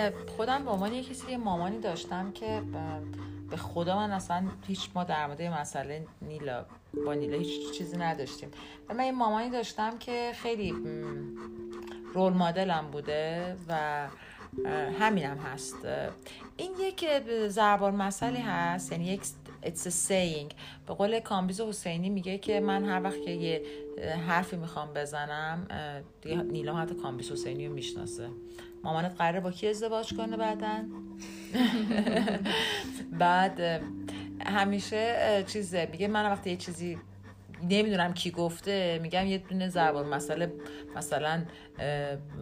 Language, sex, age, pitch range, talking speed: Persian, female, 40-59, 140-200 Hz, 120 wpm